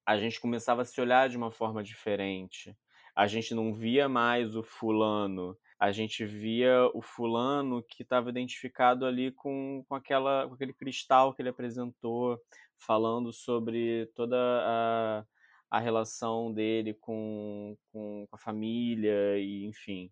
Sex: male